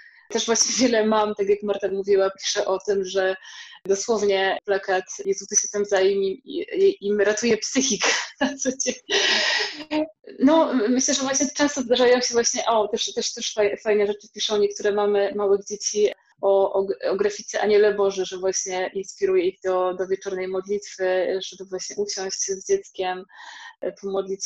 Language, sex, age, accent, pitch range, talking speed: Polish, female, 20-39, native, 200-250 Hz, 155 wpm